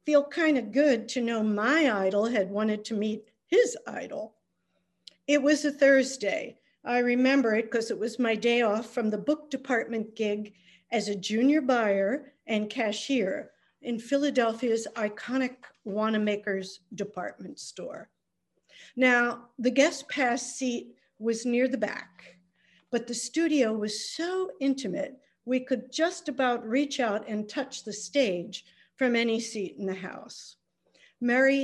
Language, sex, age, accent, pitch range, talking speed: English, female, 50-69, American, 210-265 Hz, 145 wpm